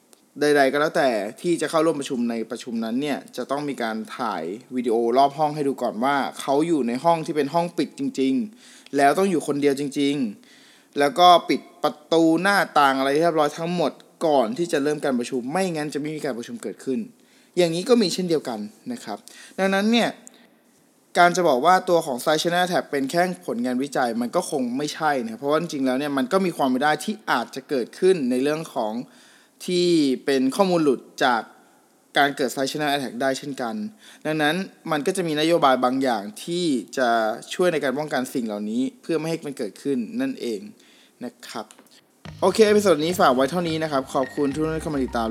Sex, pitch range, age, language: male, 135-180 Hz, 20-39, Thai